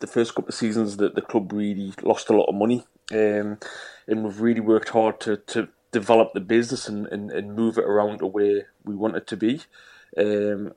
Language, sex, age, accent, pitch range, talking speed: English, male, 20-39, British, 105-115 Hz, 215 wpm